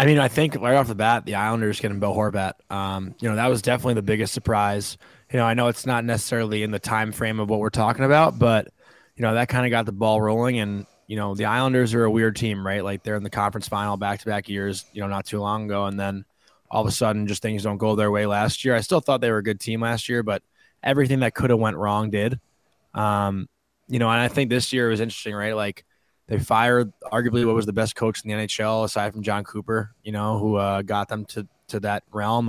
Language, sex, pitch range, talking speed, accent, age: English, male, 105-120 Hz, 260 wpm, American, 20-39